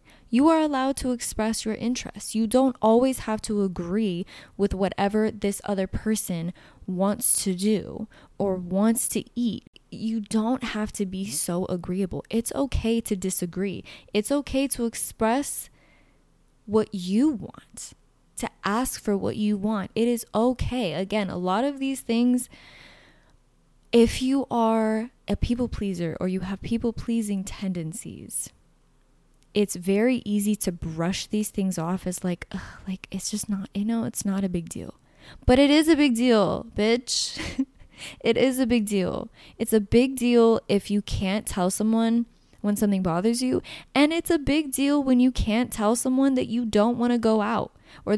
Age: 20-39